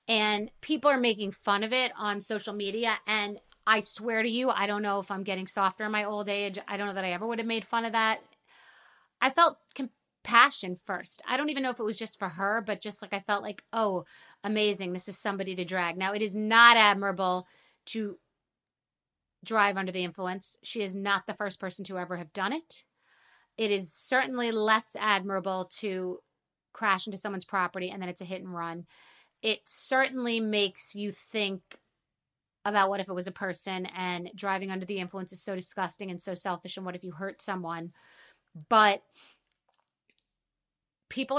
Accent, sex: American, female